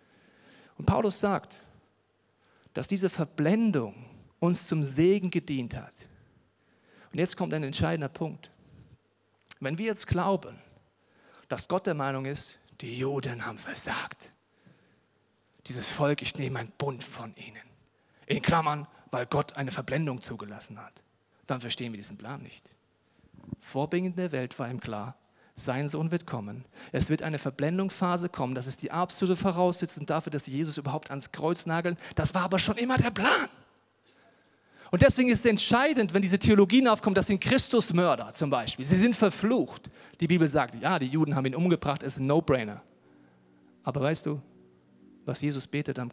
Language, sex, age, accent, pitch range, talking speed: German, male, 40-59, German, 130-175 Hz, 160 wpm